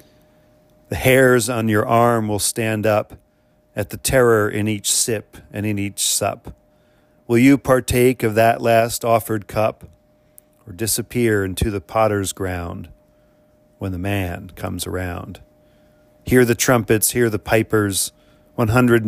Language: English